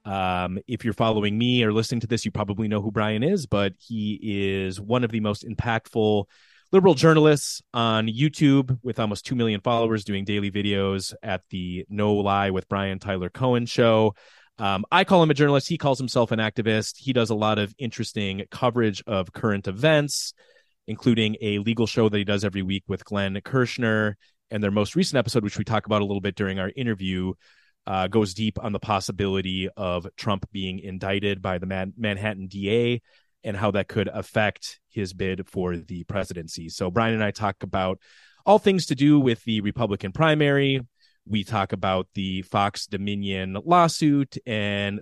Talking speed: 185 wpm